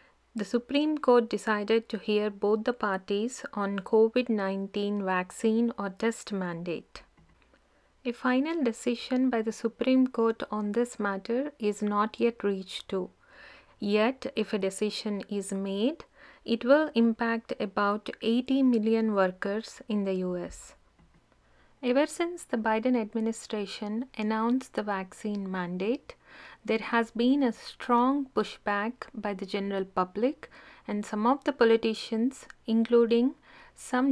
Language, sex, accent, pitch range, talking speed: Telugu, female, native, 205-245 Hz, 130 wpm